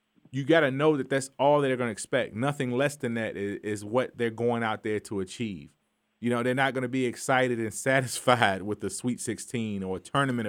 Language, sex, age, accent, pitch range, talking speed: English, male, 30-49, American, 115-150 Hz, 230 wpm